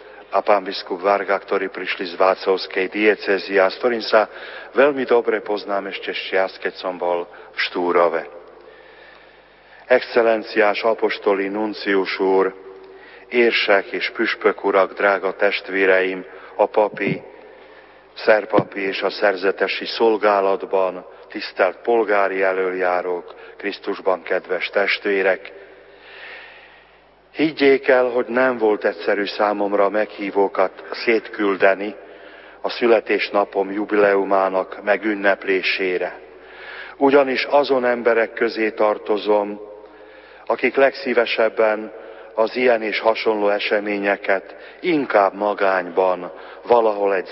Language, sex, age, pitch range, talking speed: Slovak, male, 40-59, 95-120 Hz, 85 wpm